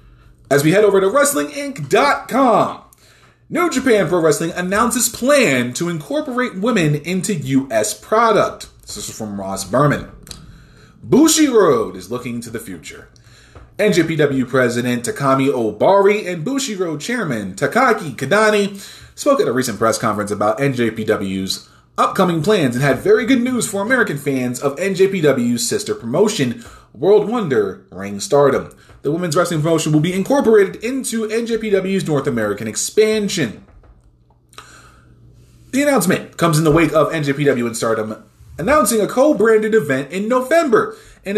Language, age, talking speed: English, 30-49, 135 wpm